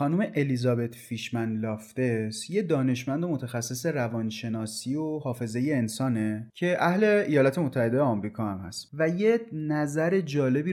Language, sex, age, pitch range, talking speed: Persian, male, 30-49, 115-160 Hz, 130 wpm